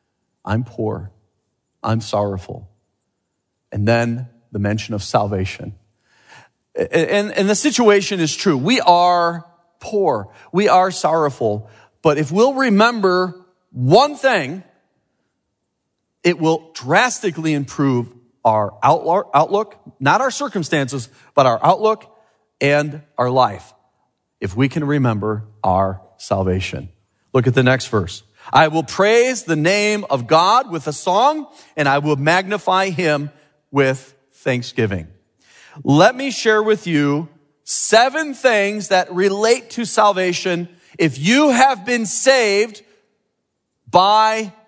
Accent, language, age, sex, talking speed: American, English, 40-59, male, 120 wpm